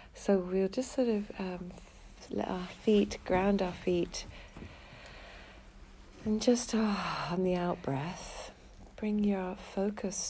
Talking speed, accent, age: 130 wpm, British, 40-59